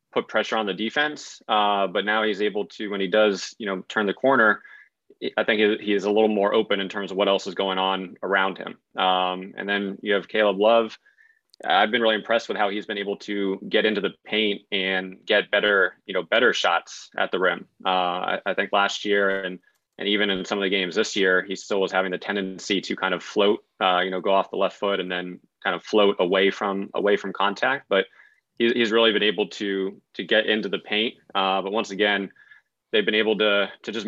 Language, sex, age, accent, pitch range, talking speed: English, male, 20-39, American, 95-105 Hz, 235 wpm